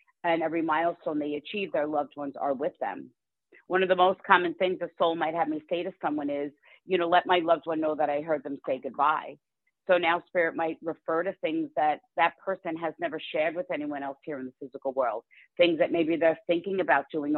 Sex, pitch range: female, 150-180 Hz